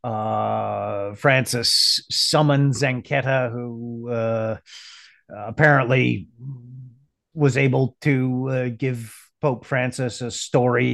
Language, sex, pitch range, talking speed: English, male, 120-140 Hz, 90 wpm